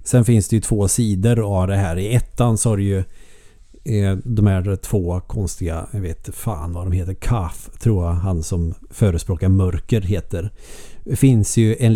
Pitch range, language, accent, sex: 90-115 Hz, Swedish, native, male